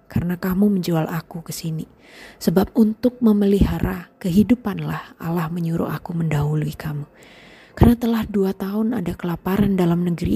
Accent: native